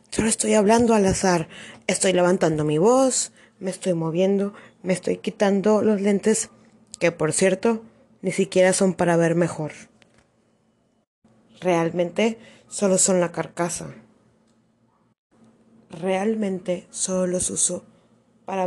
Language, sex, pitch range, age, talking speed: Czech, female, 175-215 Hz, 20-39, 115 wpm